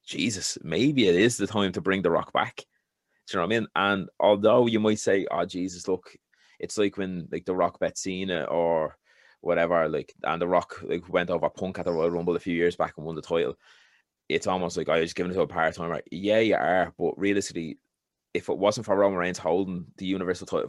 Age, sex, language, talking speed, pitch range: 20-39, male, English, 240 wpm, 85-100 Hz